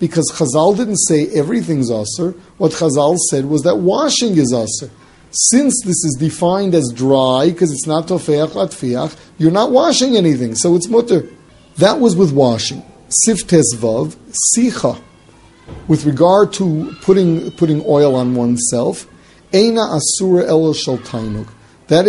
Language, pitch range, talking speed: English, 135-175 Hz, 140 wpm